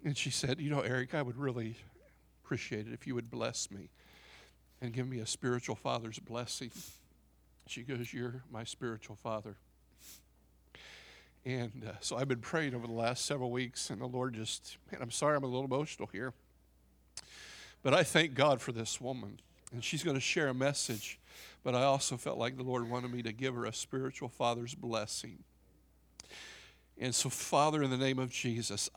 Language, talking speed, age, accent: English, 185 wpm, 50-69, American